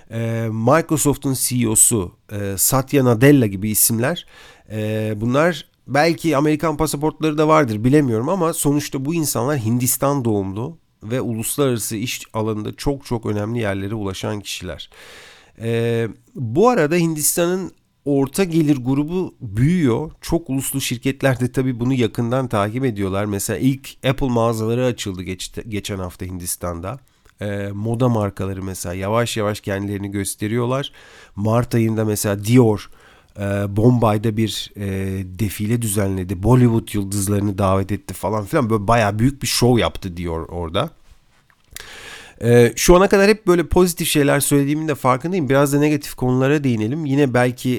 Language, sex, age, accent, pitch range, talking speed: Turkish, male, 50-69, native, 105-140 Hz, 130 wpm